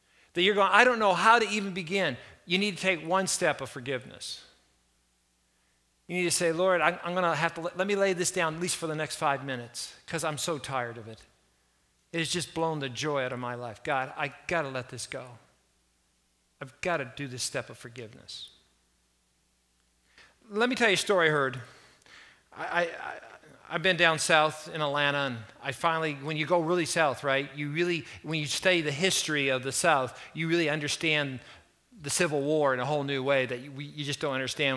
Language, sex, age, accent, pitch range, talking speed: English, male, 50-69, American, 125-175 Hz, 215 wpm